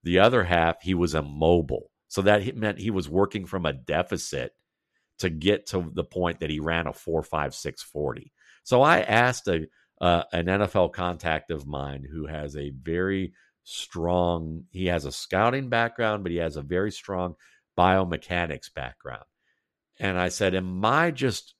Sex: male